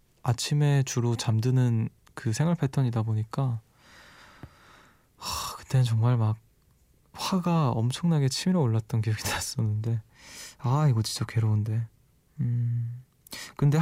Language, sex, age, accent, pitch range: Korean, male, 20-39, native, 115-145 Hz